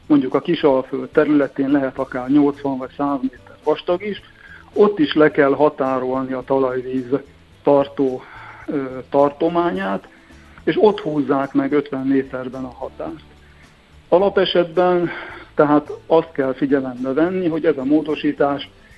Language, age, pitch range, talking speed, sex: Hungarian, 60-79, 130-155 Hz, 120 wpm, male